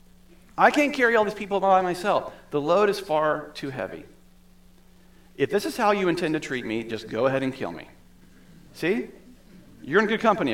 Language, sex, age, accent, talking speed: English, male, 40-59, American, 195 wpm